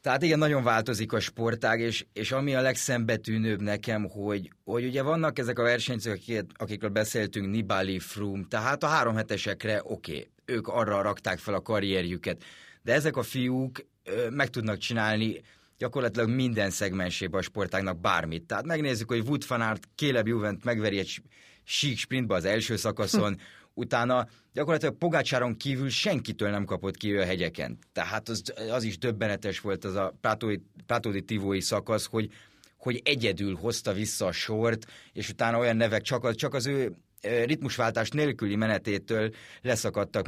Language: Hungarian